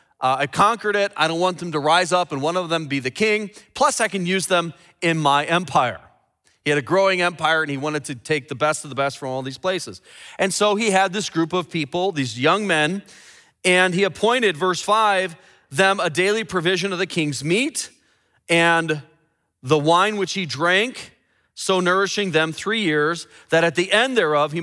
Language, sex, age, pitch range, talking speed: English, male, 40-59, 155-200 Hz, 210 wpm